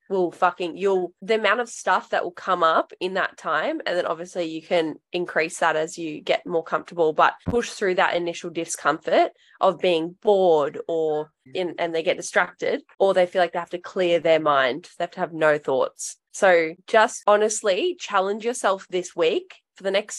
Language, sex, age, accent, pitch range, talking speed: English, female, 10-29, Australian, 175-215 Hz, 200 wpm